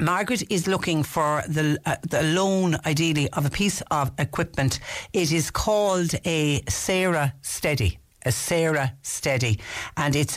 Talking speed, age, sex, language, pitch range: 145 wpm, 60-79, female, English, 115-145 Hz